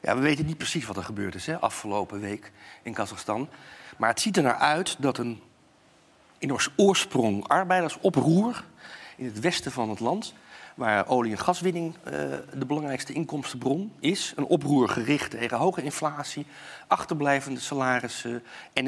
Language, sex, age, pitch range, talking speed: Dutch, male, 40-59, 125-170 Hz, 155 wpm